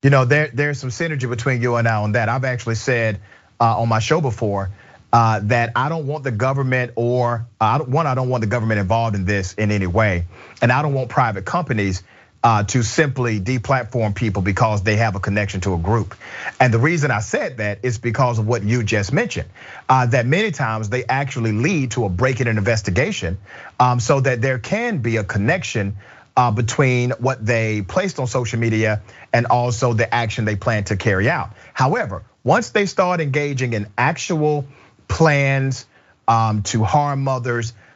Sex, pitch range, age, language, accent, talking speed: male, 110-135 Hz, 40-59, English, American, 185 wpm